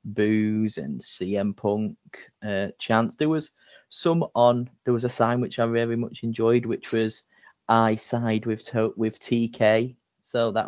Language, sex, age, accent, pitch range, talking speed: English, male, 30-49, British, 110-120 Hz, 155 wpm